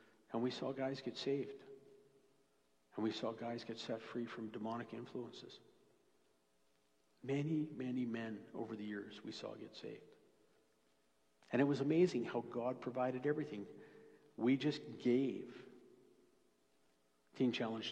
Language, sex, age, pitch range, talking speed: English, male, 60-79, 110-145 Hz, 130 wpm